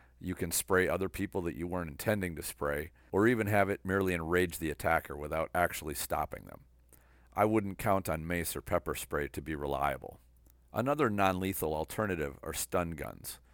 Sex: male